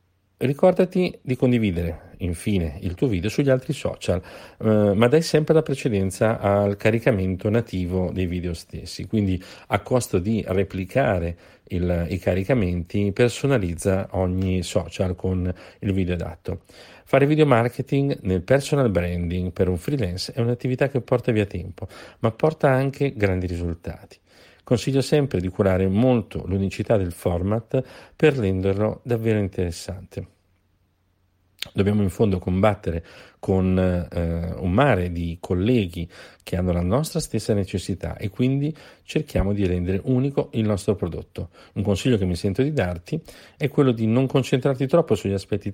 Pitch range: 90-125 Hz